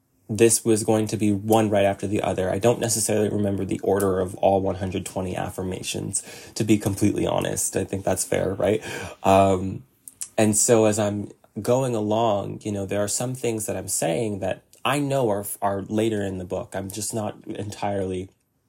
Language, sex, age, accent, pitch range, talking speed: English, male, 20-39, American, 100-120 Hz, 185 wpm